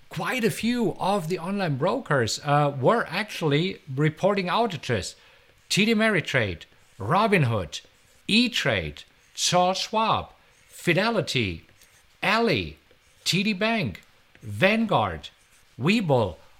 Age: 50-69